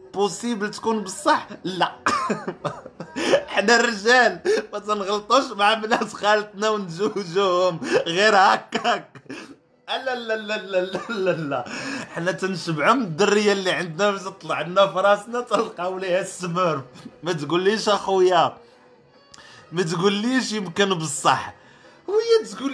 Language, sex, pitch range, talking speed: Arabic, male, 175-225 Hz, 110 wpm